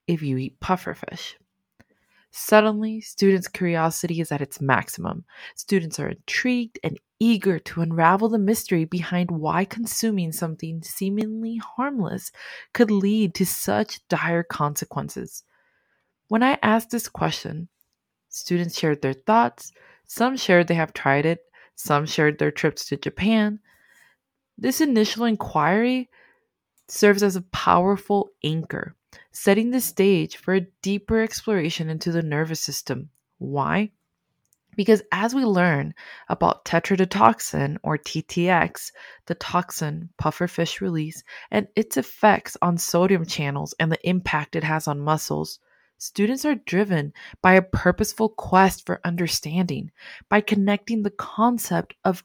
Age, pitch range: 20-39, 160-215 Hz